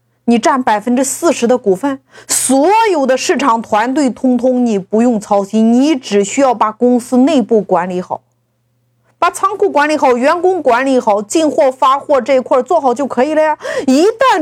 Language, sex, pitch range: Chinese, female, 210-305 Hz